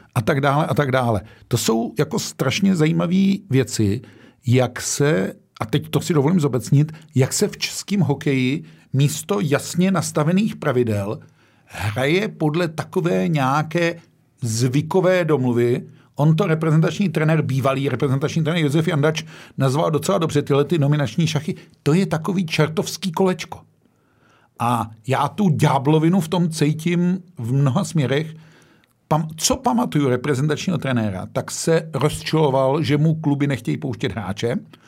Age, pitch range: 50-69, 130-165 Hz